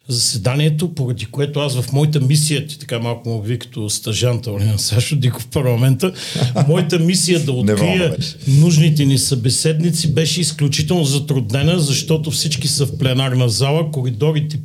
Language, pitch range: Bulgarian, 125-160 Hz